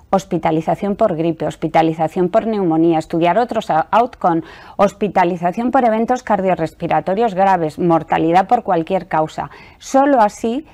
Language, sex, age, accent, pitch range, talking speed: English, female, 20-39, Spanish, 170-230 Hz, 110 wpm